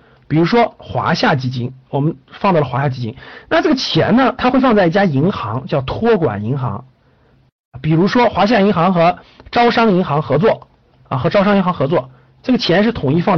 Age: 50-69